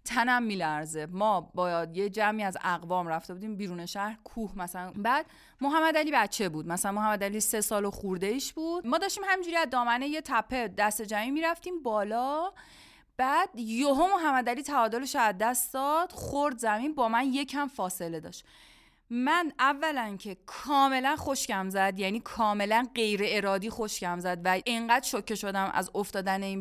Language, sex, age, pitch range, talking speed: Persian, female, 30-49, 205-330 Hz, 175 wpm